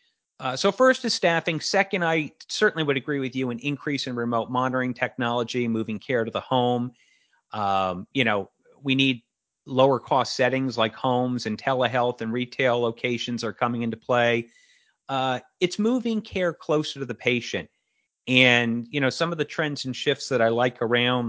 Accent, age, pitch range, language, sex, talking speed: American, 40-59, 120-145 Hz, English, male, 180 wpm